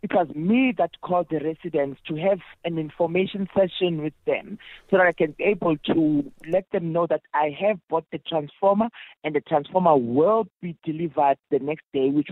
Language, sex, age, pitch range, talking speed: English, male, 60-79, 160-195 Hz, 195 wpm